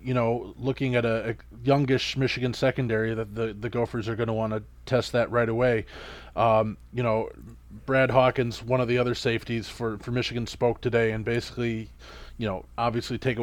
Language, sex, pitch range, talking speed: English, male, 110-130 Hz, 195 wpm